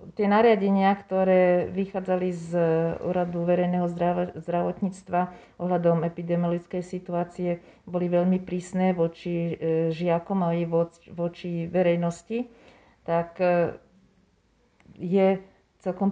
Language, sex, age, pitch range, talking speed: Slovak, female, 40-59, 165-185 Hz, 85 wpm